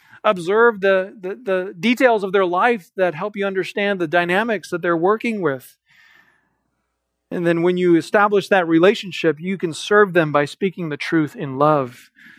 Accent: American